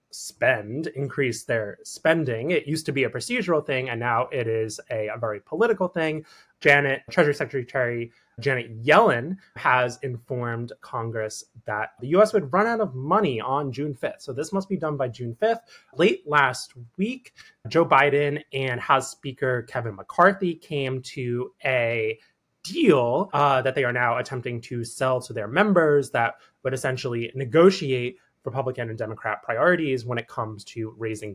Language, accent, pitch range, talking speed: English, American, 120-170 Hz, 165 wpm